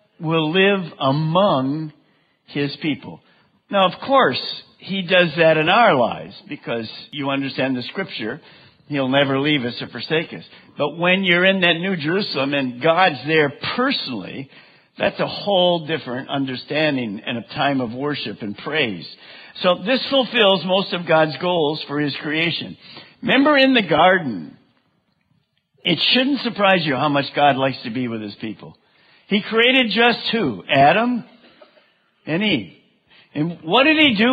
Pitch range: 155-225 Hz